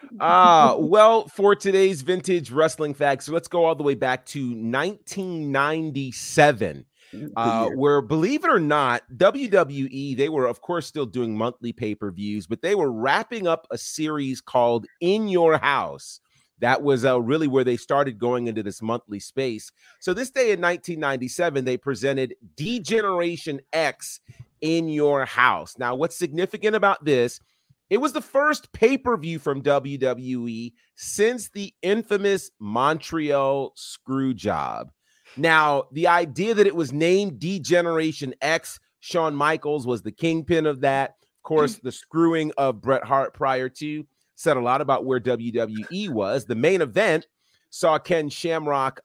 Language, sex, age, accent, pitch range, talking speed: English, male, 30-49, American, 130-175 Hz, 150 wpm